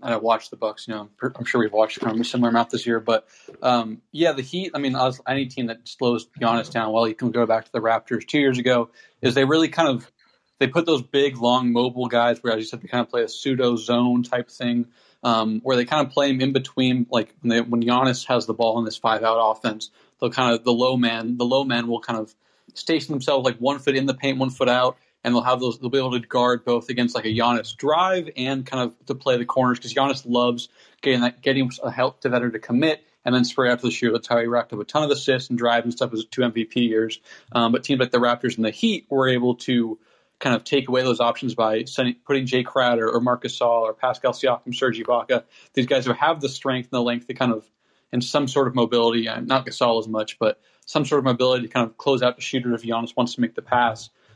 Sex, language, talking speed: male, English, 265 wpm